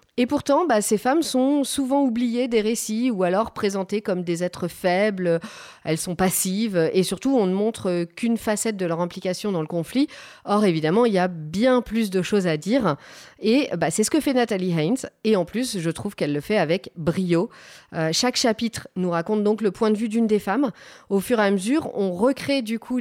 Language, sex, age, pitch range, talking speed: French, female, 40-59, 190-245 Hz, 220 wpm